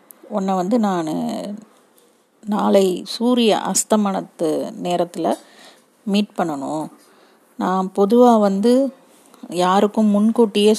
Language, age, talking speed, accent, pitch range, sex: Tamil, 30-49, 80 wpm, native, 180-220 Hz, female